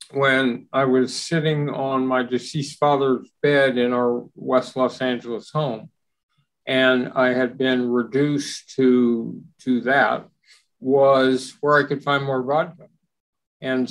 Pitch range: 125-145 Hz